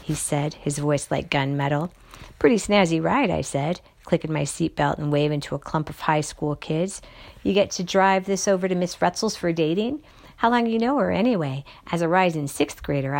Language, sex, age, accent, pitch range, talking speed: English, female, 50-69, American, 145-190 Hz, 205 wpm